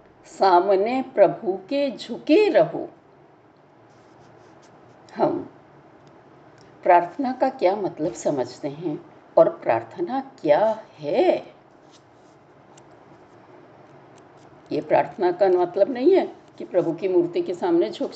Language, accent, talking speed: Hindi, native, 95 wpm